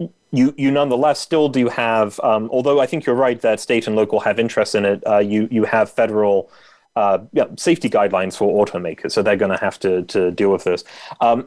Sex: male